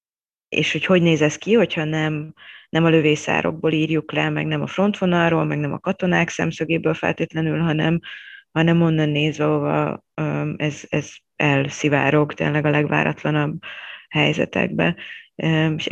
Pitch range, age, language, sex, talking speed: 150-170 Hz, 20-39, Hungarian, female, 135 wpm